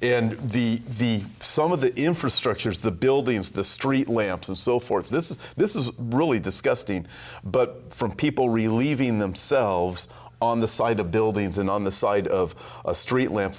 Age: 40-59